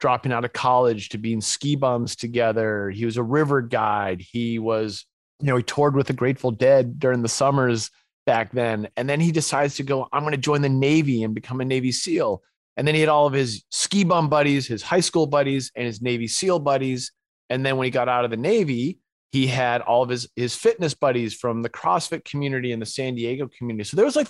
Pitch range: 115-140 Hz